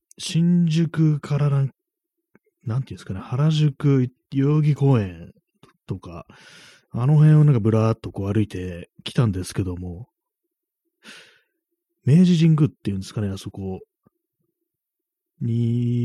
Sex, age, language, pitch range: male, 30-49, Japanese, 105-150 Hz